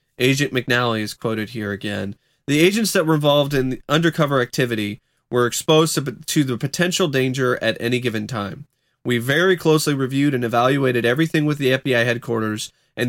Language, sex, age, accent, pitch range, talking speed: English, male, 30-49, American, 120-150 Hz, 170 wpm